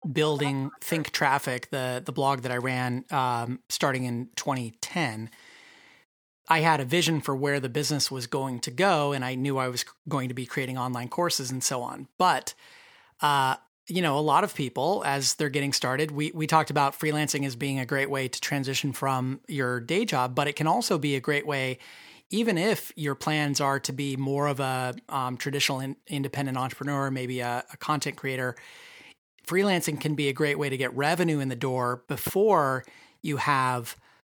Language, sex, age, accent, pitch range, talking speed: English, male, 30-49, American, 130-155 Hz, 190 wpm